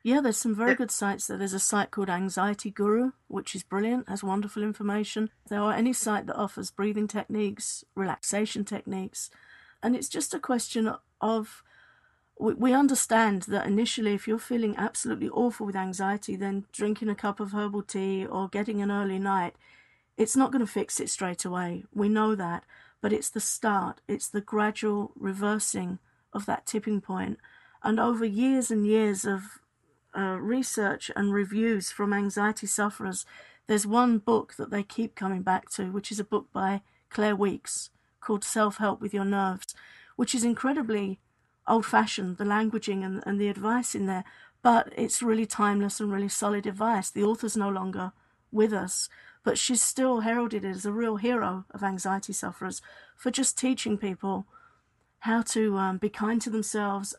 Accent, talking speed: British, 170 wpm